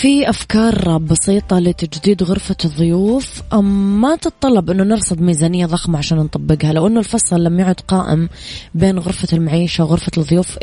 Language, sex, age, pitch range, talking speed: Arabic, female, 20-39, 165-190 Hz, 145 wpm